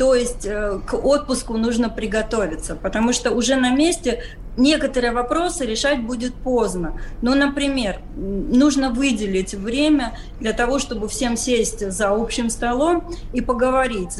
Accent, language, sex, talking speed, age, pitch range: native, Russian, female, 130 wpm, 20-39, 210-260 Hz